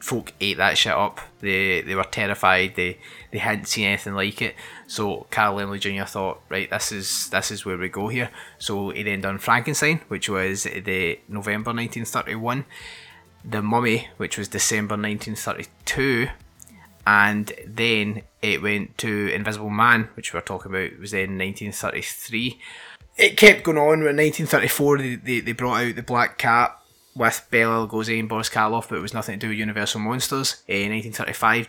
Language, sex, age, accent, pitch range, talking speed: English, male, 20-39, British, 100-120 Hz, 185 wpm